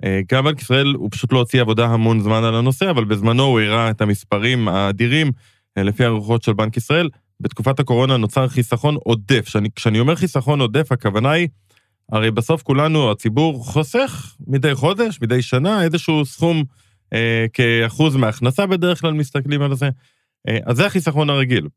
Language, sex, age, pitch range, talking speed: Hebrew, male, 20-39, 115-150 Hz, 165 wpm